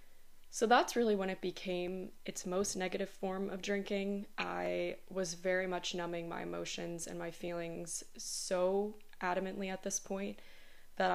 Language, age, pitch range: English, 20-39, 170-195 Hz